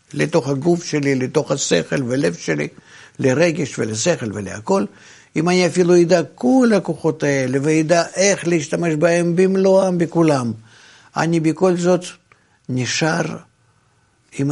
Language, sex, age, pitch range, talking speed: Hebrew, male, 60-79, 120-160 Hz, 115 wpm